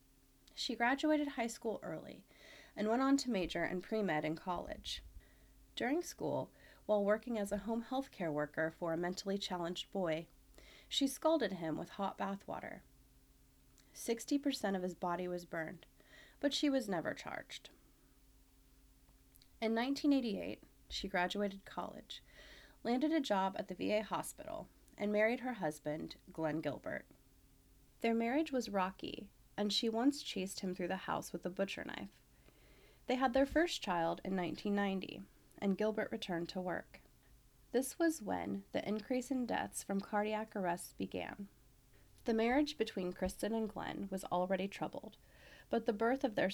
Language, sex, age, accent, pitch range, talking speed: English, female, 30-49, American, 175-230 Hz, 150 wpm